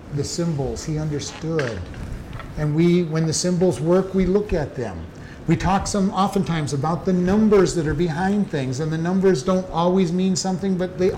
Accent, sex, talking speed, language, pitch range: American, male, 185 wpm, English, 150-180 Hz